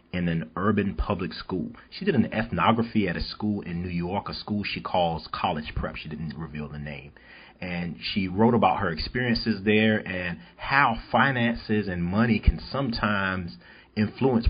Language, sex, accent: English, male, American